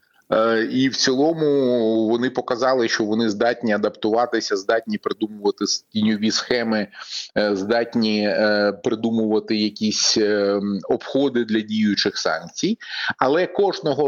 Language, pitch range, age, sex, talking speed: Ukrainian, 110-135 Hz, 30-49, male, 95 wpm